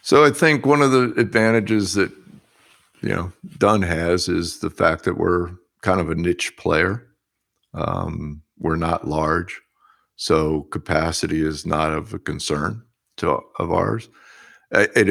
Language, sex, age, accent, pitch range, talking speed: English, male, 50-69, American, 80-95 Hz, 145 wpm